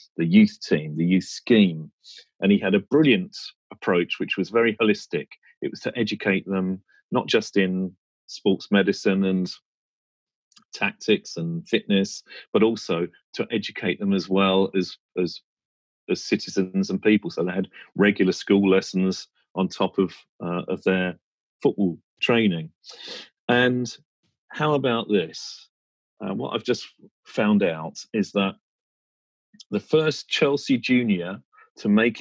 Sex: male